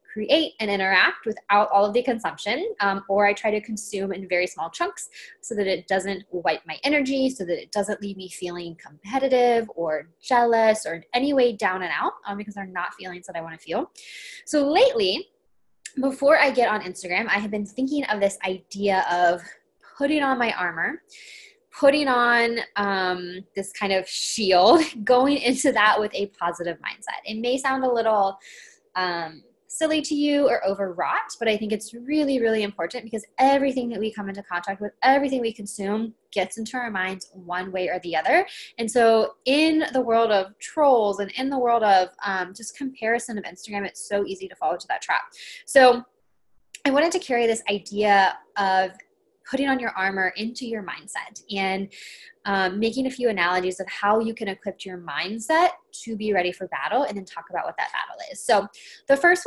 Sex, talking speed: female, 195 wpm